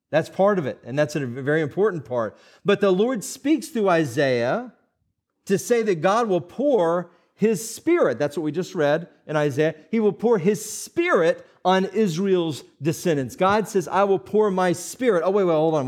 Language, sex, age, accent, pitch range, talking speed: English, male, 40-59, American, 160-225 Hz, 195 wpm